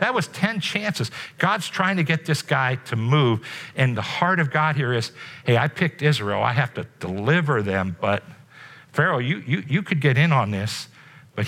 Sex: male